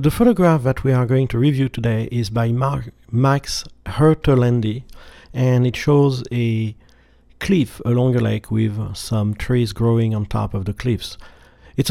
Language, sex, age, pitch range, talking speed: English, male, 50-69, 105-125 Hz, 160 wpm